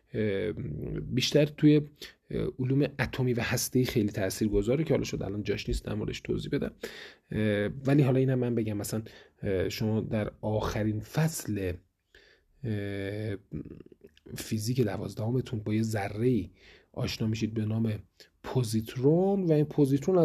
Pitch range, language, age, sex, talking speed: 110-140 Hz, Persian, 30-49, male, 120 wpm